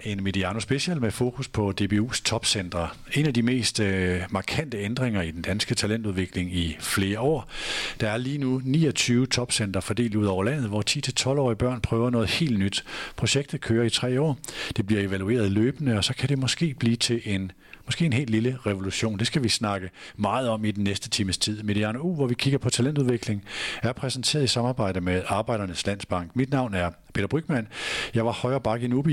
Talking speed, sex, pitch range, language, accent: 195 wpm, male, 105-130 Hz, Danish, native